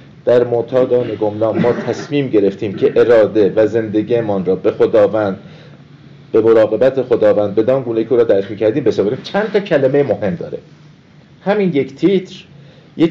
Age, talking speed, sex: 50-69, 145 wpm, male